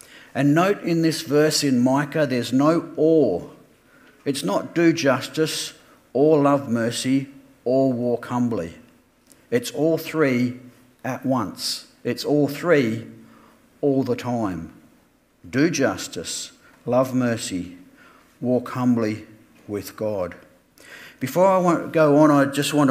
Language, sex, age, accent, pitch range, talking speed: English, male, 50-69, Australian, 120-145 Hz, 125 wpm